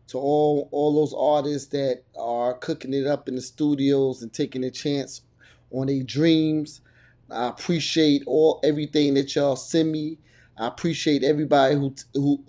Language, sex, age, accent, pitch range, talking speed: English, male, 30-49, American, 125-145 Hz, 155 wpm